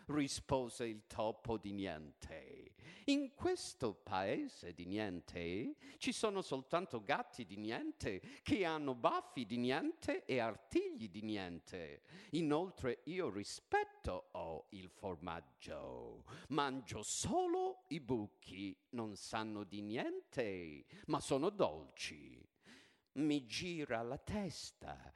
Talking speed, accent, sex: 110 wpm, native, male